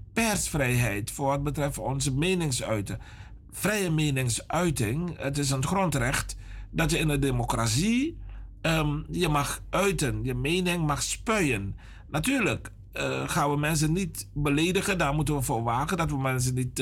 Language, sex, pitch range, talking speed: Dutch, male, 110-155 Hz, 145 wpm